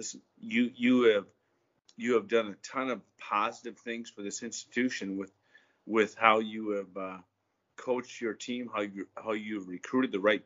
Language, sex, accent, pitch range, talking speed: English, male, American, 105-130 Hz, 180 wpm